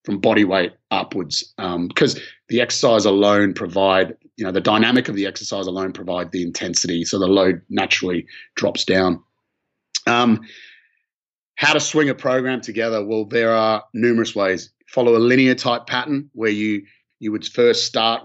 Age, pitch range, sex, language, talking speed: 30-49, 105-125 Hz, male, English, 165 wpm